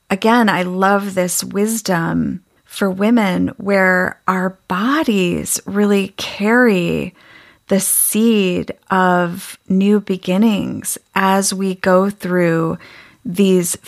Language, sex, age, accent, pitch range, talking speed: English, female, 30-49, American, 180-220 Hz, 95 wpm